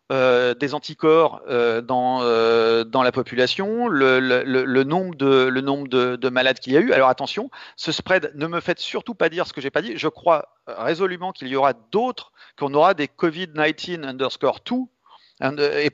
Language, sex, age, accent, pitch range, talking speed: French, male, 40-59, French, 135-175 Hz, 195 wpm